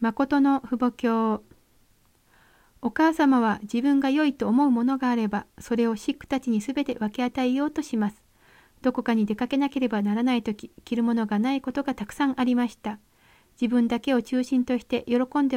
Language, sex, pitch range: Japanese, female, 235-275 Hz